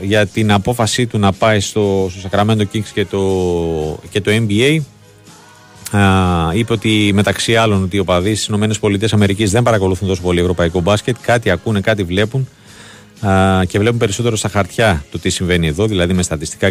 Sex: male